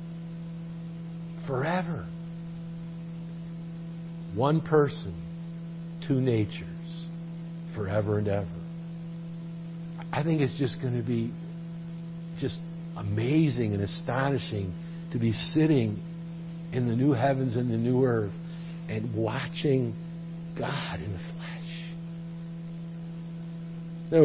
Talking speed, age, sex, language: 90 wpm, 60-79, male, English